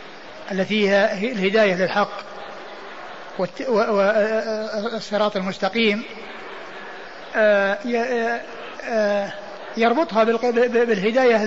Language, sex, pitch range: Arabic, male, 210-245 Hz